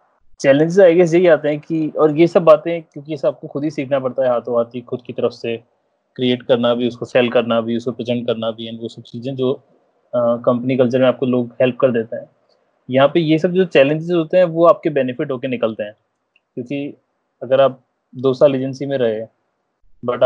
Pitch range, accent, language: 120-140 Hz, native, Hindi